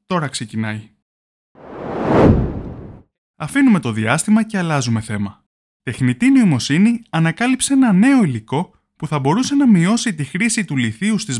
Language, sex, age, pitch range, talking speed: Greek, male, 20-39, 120-195 Hz, 125 wpm